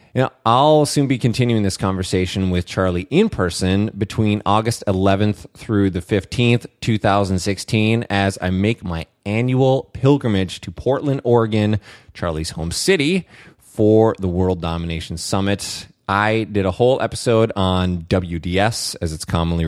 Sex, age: male, 30-49